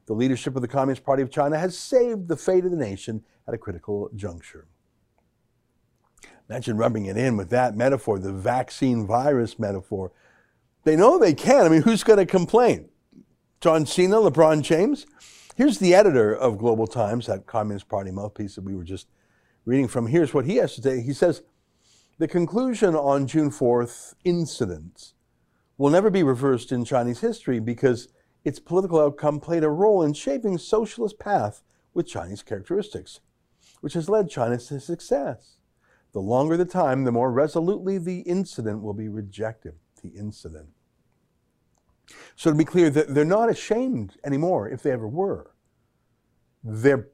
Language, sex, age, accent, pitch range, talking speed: English, male, 50-69, American, 115-170 Hz, 165 wpm